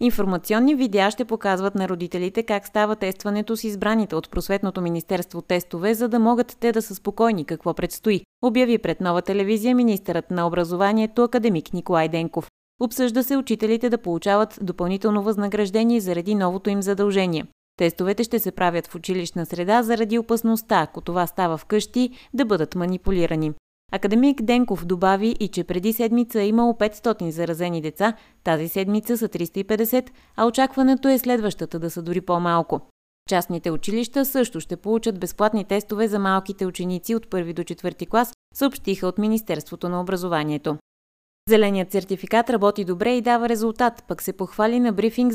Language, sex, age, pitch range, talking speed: Bulgarian, female, 30-49, 175-230 Hz, 155 wpm